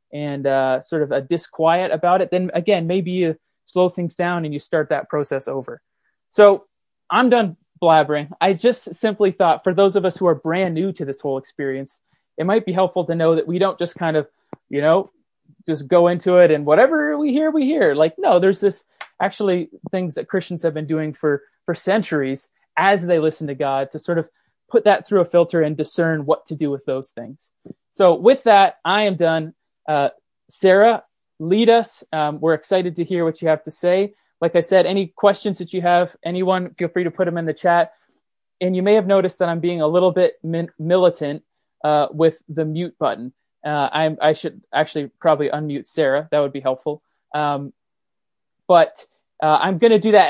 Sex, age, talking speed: male, 20-39, 210 wpm